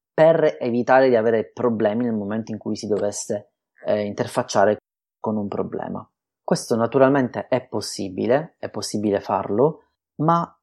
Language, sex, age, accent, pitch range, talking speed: Italian, male, 30-49, native, 105-125 Hz, 135 wpm